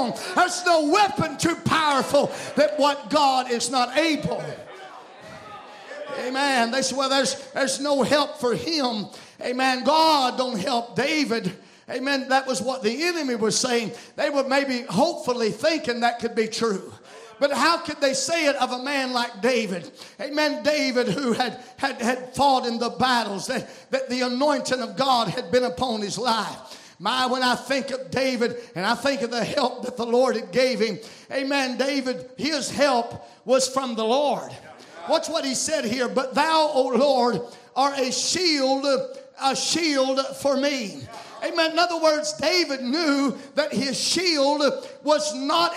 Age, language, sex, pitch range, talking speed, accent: 50-69, English, male, 250-290 Hz, 165 wpm, American